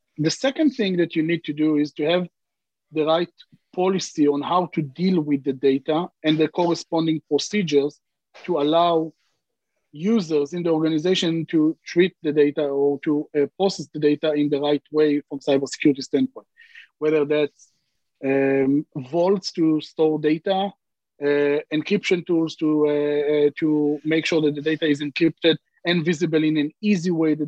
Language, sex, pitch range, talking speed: English, male, 150-170 Hz, 165 wpm